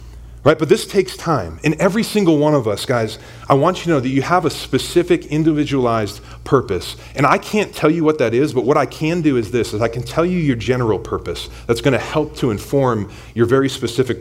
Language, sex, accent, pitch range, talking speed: English, male, American, 95-135 Hz, 235 wpm